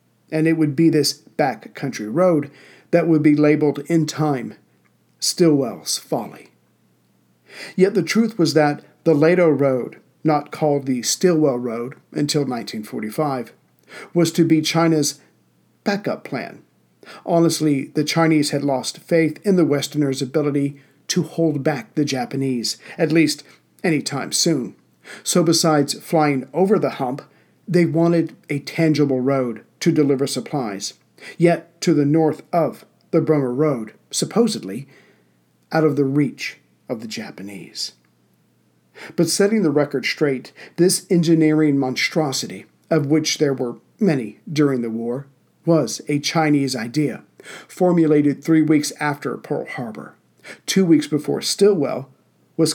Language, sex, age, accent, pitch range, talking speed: English, male, 50-69, American, 135-165 Hz, 130 wpm